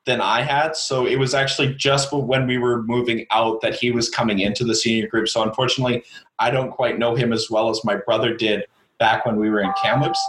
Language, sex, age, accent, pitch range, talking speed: English, male, 30-49, American, 125-165 Hz, 235 wpm